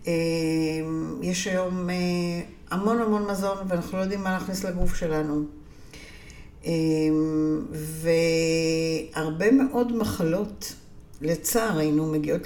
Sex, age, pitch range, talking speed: female, 60-79, 150-195 Hz, 85 wpm